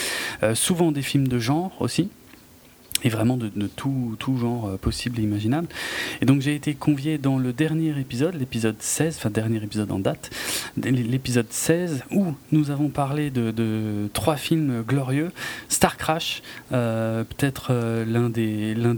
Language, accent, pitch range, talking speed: French, French, 120-150 Hz, 170 wpm